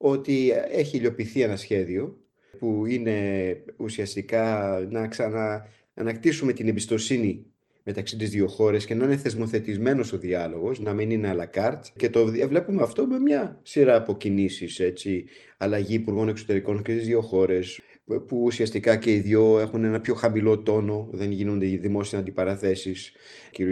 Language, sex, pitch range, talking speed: Greek, male, 100-115 Hz, 145 wpm